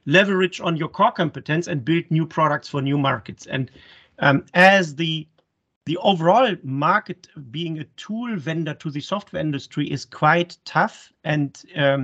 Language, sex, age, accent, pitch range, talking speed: English, male, 40-59, German, 145-175 Hz, 155 wpm